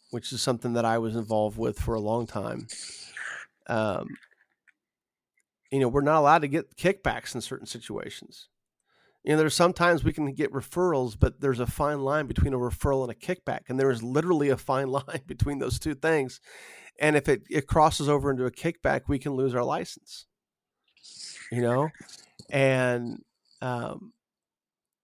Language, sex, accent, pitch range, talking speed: English, male, American, 120-145 Hz, 175 wpm